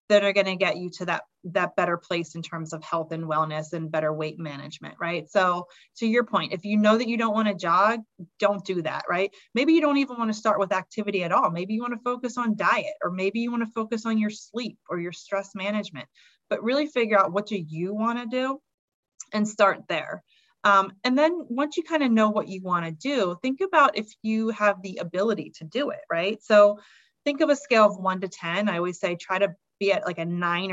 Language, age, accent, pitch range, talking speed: English, 30-49, American, 175-220 Hz, 245 wpm